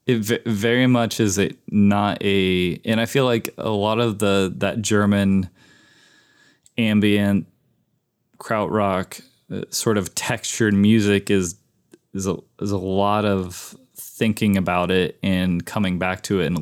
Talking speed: 150 wpm